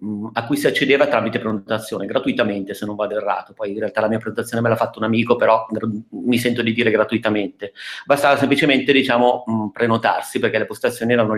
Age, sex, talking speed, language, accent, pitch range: 30-49, male, 190 wpm, Italian, native, 110-130 Hz